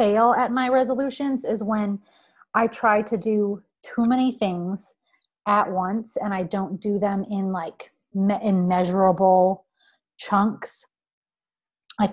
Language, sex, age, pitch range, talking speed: English, female, 30-49, 200-260 Hz, 135 wpm